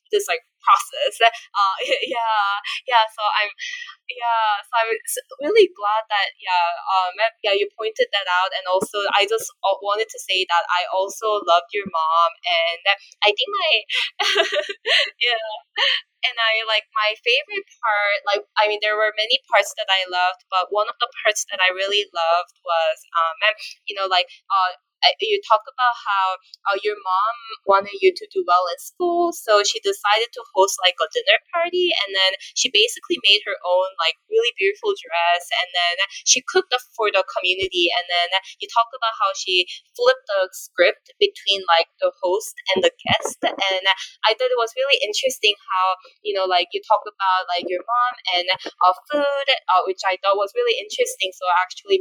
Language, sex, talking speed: English, female, 180 wpm